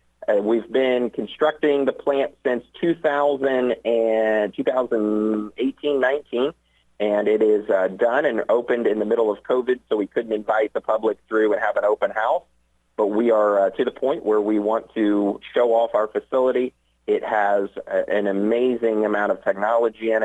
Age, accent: 30-49, American